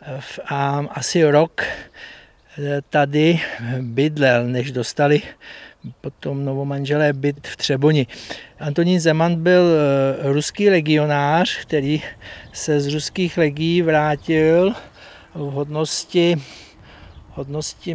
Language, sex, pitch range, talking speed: Czech, male, 140-165 Hz, 90 wpm